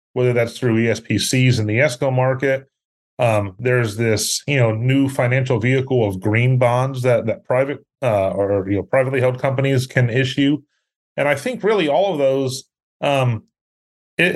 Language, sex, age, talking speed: English, male, 30-49, 165 wpm